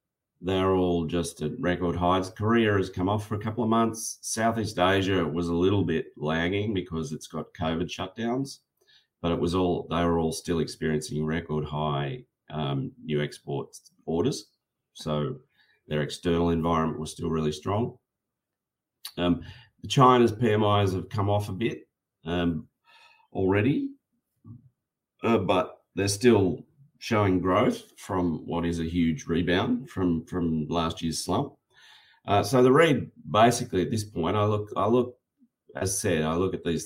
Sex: male